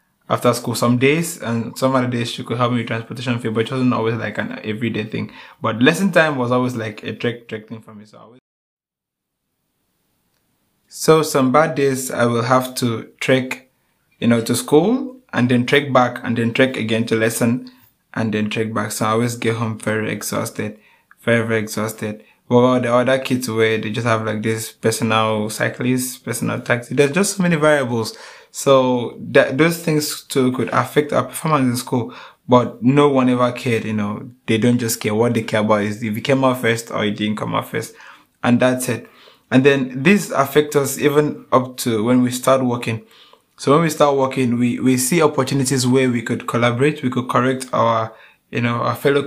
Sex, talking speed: male, 200 wpm